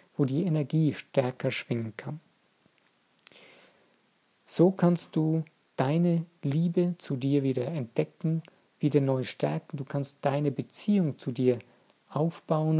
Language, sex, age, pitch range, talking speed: German, male, 50-69, 135-165 Hz, 115 wpm